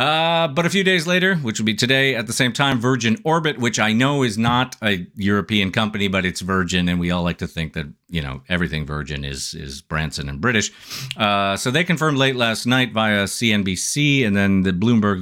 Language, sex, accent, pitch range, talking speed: English, male, American, 90-135 Hz, 220 wpm